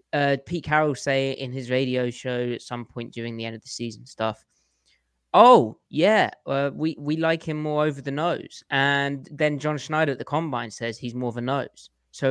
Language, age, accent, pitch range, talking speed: English, 20-39, British, 120-145 Hz, 210 wpm